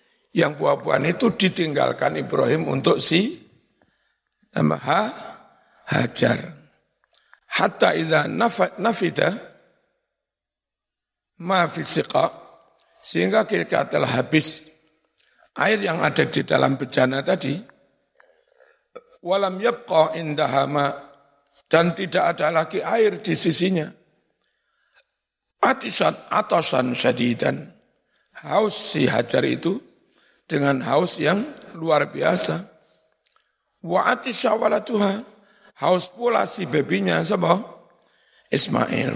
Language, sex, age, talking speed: Indonesian, male, 60-79, 85 wpm